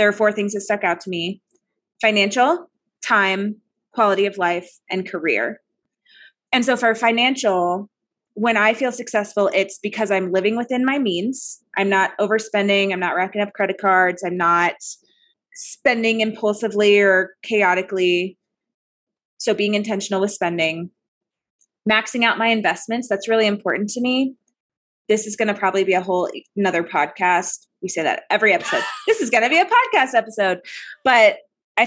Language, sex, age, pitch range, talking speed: English, female, 20-39, 185-225 Hz, 160 wpm